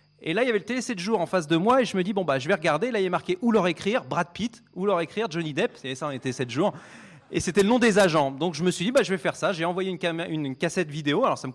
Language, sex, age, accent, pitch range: French, male, 30-49, French, 155-215 Hz